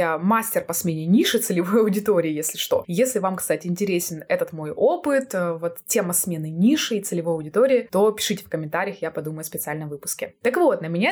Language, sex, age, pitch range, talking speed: Russian, female, 20-39, 180-255 Hz, 195 wpm